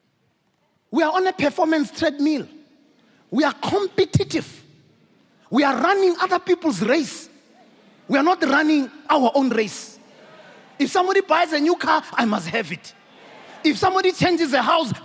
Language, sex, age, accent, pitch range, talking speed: English, male, 30-49, South African, 280-375 Hz, 150 wpm